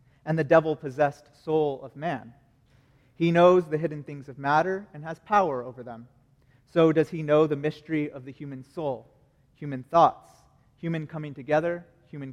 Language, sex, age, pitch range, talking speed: English, male, 30-49, 135-160 Hz, 165 wpm